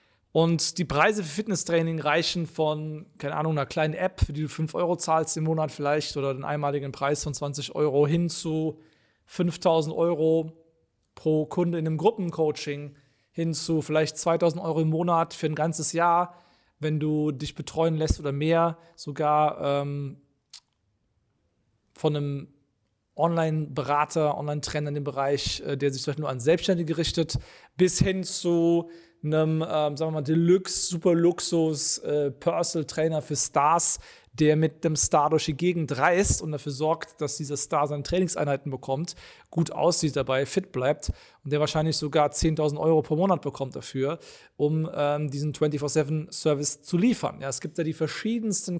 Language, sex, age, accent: German, male, 40-59, German